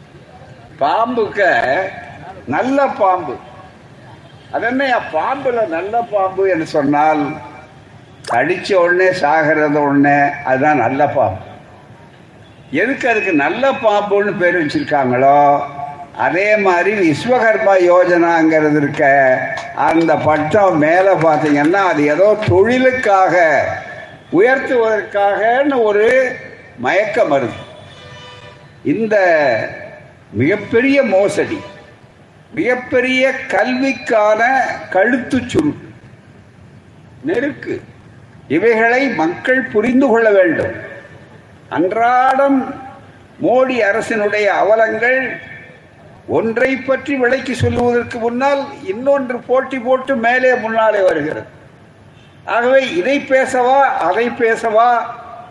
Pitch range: 180-260 Hz